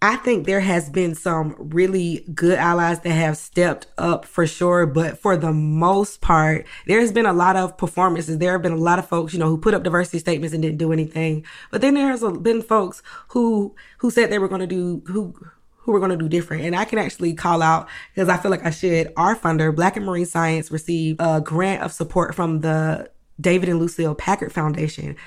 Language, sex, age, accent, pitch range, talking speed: English, female, 20-39, American, 160-195 Hz, 230 wpm